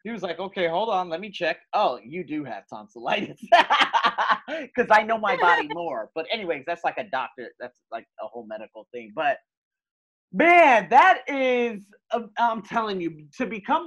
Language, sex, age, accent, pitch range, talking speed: English, male, 30-49, American, 150-210 Hz, 180 wpm